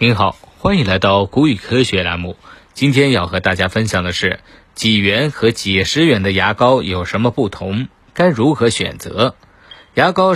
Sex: male